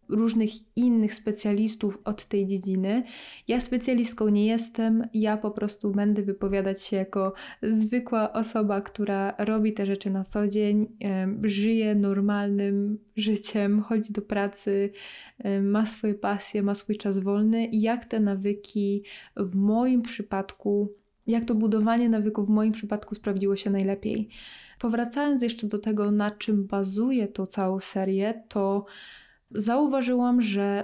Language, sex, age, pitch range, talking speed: Polish, female, 20-39, 200-225 Hz, 130 wpm